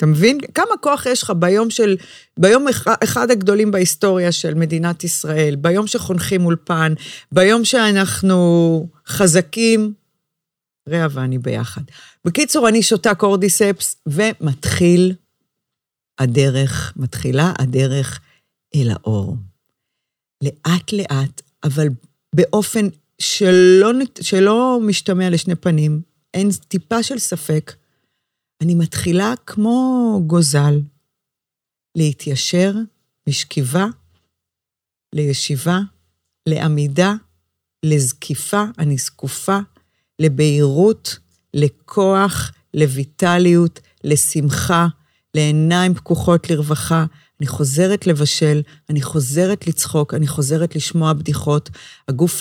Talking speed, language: 85 wpm, Hebrew